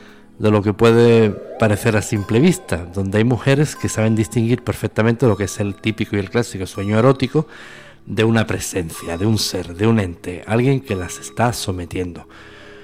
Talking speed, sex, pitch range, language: 180 wpm, male, 100-125 Hz, Spanish